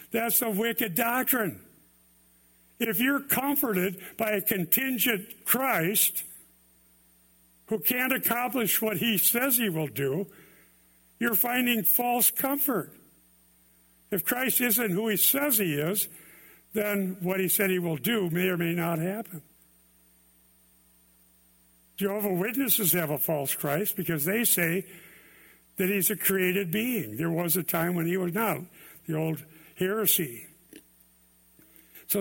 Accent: American